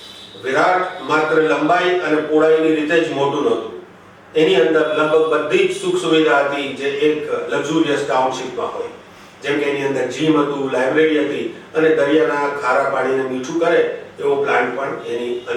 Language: Gujarati